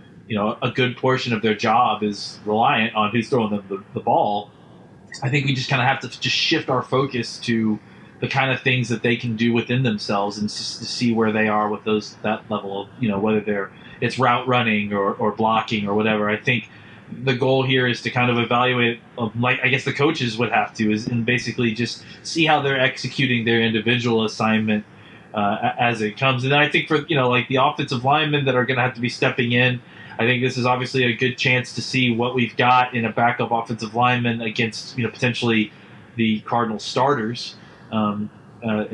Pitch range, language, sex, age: 110-130 Hz, English, male, 20-39